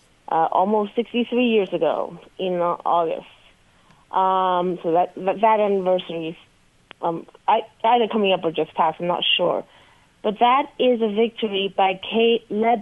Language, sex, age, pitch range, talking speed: English, female, 40-59, 190-240 Hz, 160 wpm